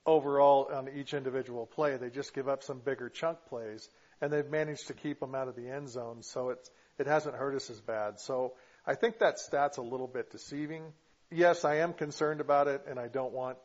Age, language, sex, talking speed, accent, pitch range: 50-69, English, male, 225 wpm, American, 130-145 Hz